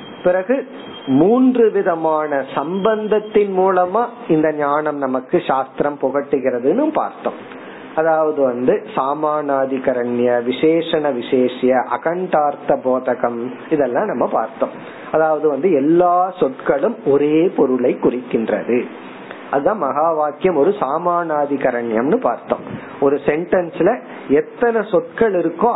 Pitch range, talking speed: 140-195 Hz, 80 wpm